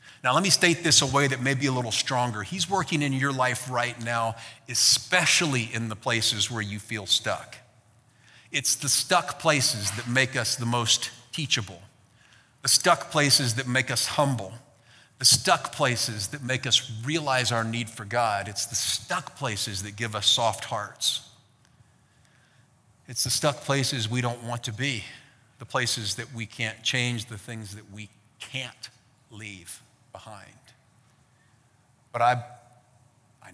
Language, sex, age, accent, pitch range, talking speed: English, male, 40-59, American, 115-135 Hz, 160 wpm